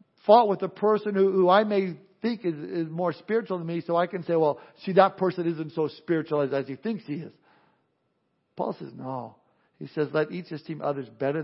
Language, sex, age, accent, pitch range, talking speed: English, male, 50-69, American, 160-195 Hz, 215 wpm